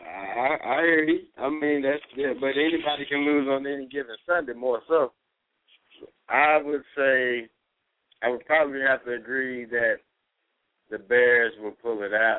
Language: English